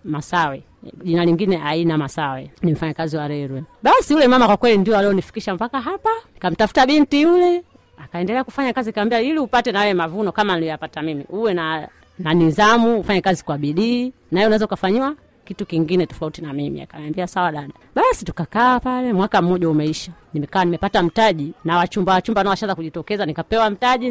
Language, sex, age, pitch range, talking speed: Swahili, female, 30-49, 170-235 Hz, 175 wpm